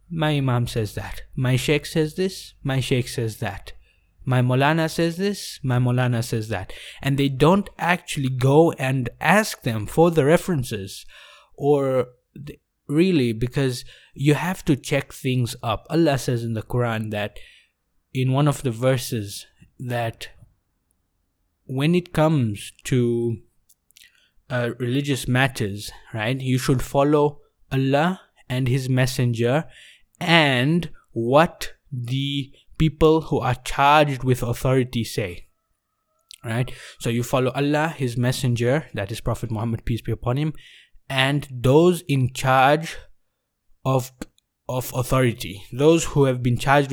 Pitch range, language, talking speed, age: 120-150 Hz, English, 135 wpm, 20-39